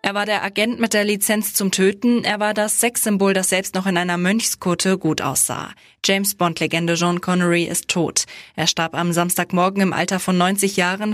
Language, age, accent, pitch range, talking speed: German, 20-39, German, 170-205 Hz, 190 wpm